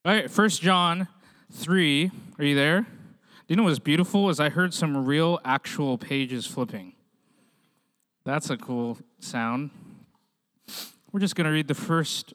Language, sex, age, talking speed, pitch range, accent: English, male, 20-39, 155 wpm, 140-195 Hz, American